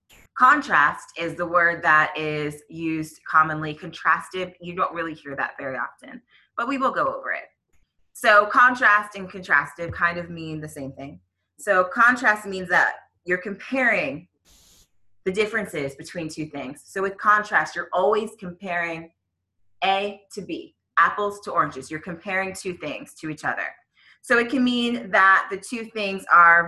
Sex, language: female, English